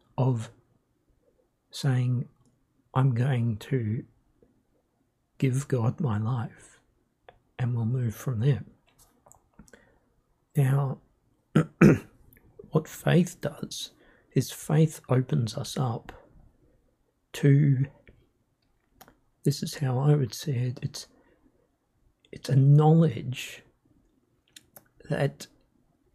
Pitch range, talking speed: 125-150 Hz, 85 wpm